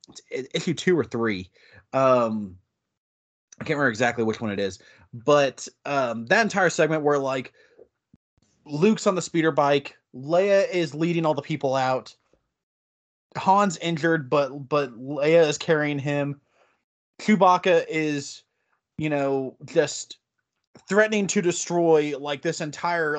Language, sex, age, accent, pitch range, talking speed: English, male, 20-39, American, 130-165 Hz, 130 wpm